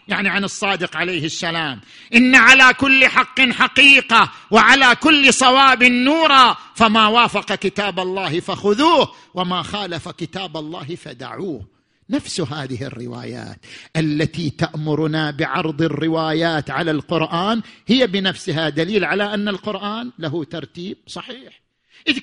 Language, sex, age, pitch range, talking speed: Arabic, male, 50-69, 190-275 Hz, 115 wpm